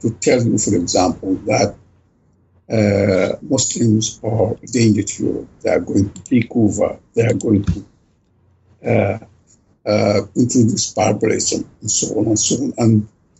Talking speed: 140 wpm